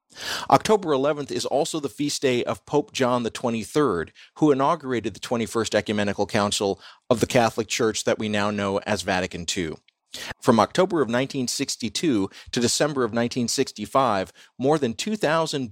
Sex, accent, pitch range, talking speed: male, American, 110-150 Hz, 150 wpm